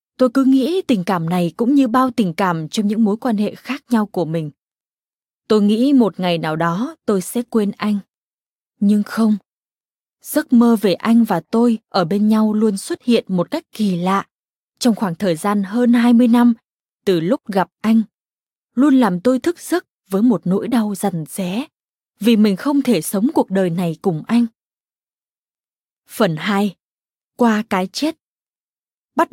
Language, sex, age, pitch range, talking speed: Vietnamese, female, 20-39, 195-245 Hz, 175 wpm